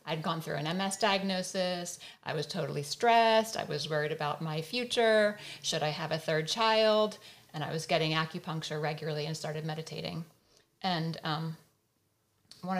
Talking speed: 160 wpm